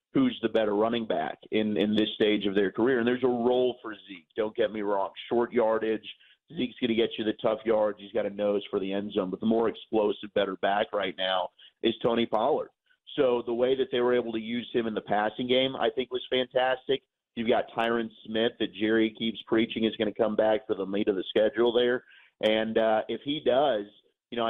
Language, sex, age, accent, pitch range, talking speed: English, male, 40-59, American, 105-120 Hz, 235 wpm